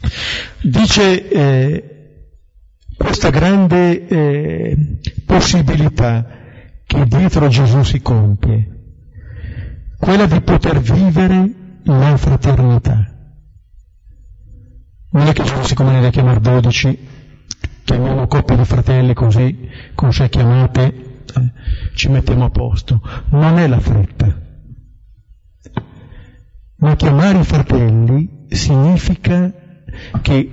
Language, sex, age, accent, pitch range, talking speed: Italian, male, 50-69, native, 110-145 Hz, 100 wpm